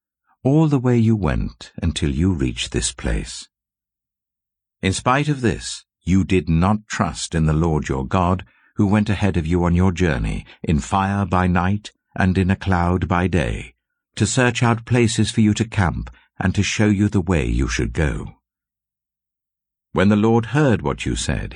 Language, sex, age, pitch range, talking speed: English, male, 60-79, 75-105 Hz, 180 wpm